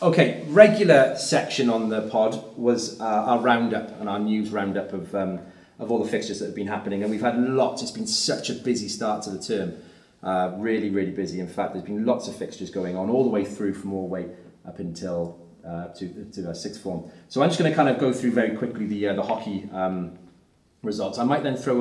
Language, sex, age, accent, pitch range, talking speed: English, male, 30-49, British, 95-125 Hz, 235 wpm